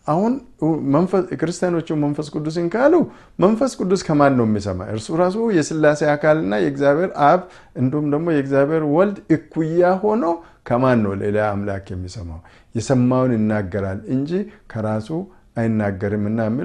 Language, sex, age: Amharic, male, 50-69